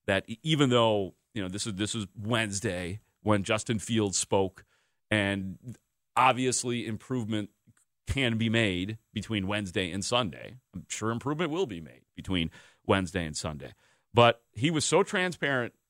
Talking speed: 145 wpm